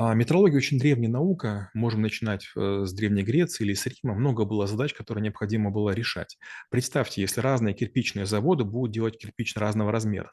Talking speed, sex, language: 170 wpm, male, Russian